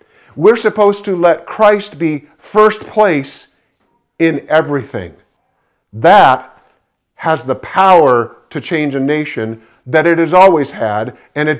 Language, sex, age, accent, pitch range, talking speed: English, male, 50-69, American, 140-185 Hz, 130 wpm